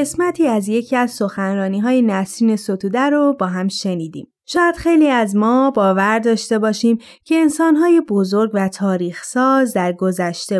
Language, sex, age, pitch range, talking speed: Persian, female, 20-39, 200-270 Hz, 140 wpm